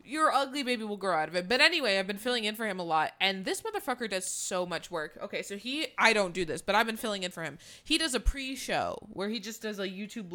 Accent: American